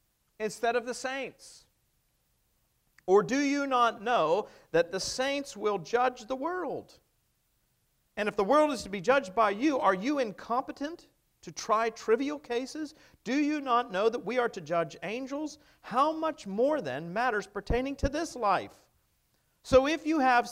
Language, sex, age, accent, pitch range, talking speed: English, male, 50-69, American, 155-255 Hz, 165 wpm